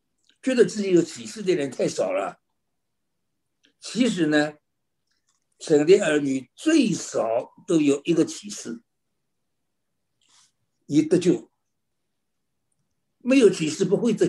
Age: 60-79